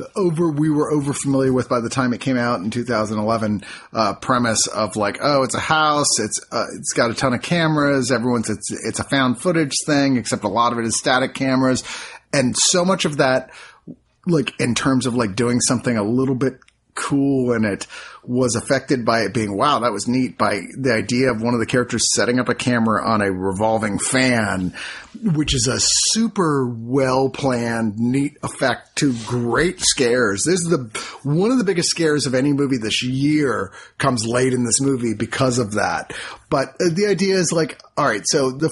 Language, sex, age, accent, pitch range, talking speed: English, male, 30-49, American, 115-140 Hz, 200 wpm